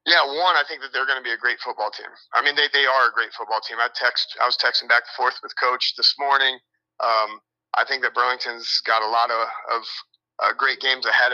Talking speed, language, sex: 255 wpm, English, male